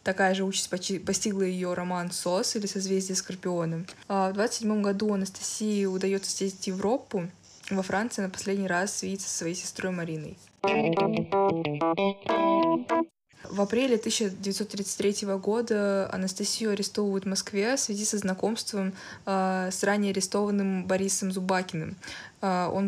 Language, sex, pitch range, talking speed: Russian, female, 185-200 Hz, 130 wpm